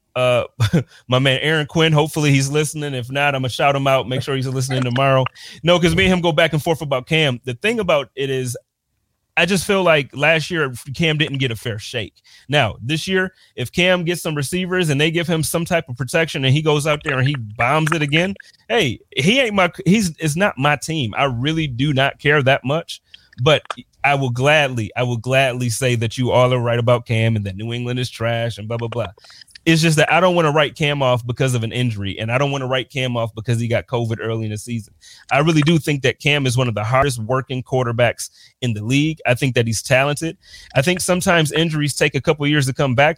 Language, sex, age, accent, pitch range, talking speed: English, male, 30-49, American, 125-155 Hz, 250 wpm